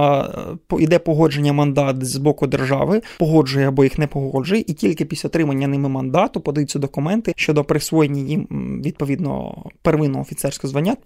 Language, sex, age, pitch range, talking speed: Ukrainian, male, 20-39, 145-175 Hz, 150 wpm